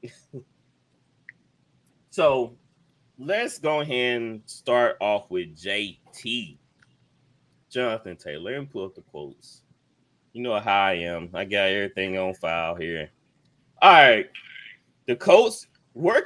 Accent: American